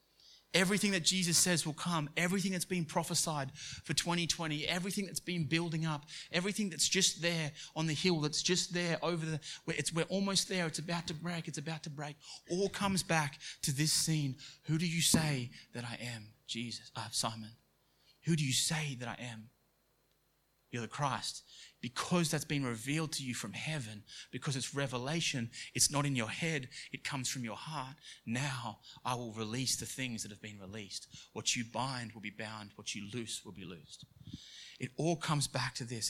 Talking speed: 195 wpm